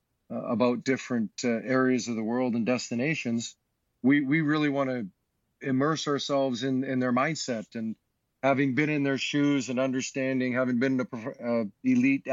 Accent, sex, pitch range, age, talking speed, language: American, male, 120-140 Hz, 40-59, 155 wpm, English